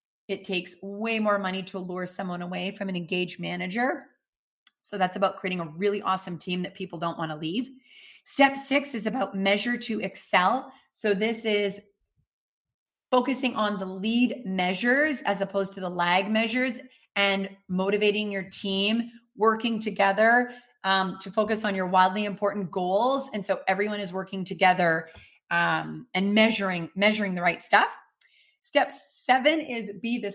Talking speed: 160 wpm